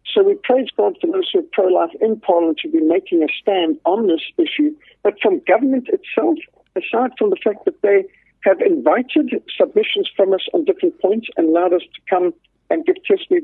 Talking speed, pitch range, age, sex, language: 200 wpm, 225-375 Hz, 60-79, male, English